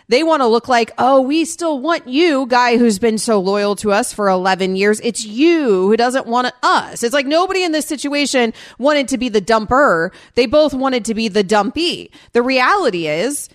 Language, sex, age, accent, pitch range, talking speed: English, female, 30-49, American, 215-310 Hz, 210 wpm